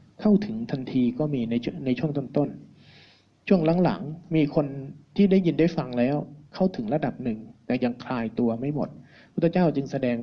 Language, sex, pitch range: Thai, male, 120-160 Hz